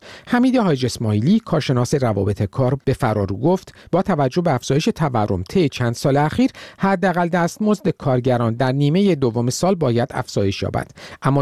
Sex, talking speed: male, 150 wpm